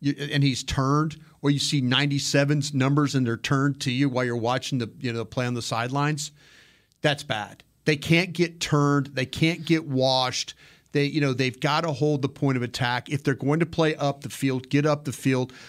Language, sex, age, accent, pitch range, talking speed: English, male, 40-59, American, 130-155 Hz, 220 wpm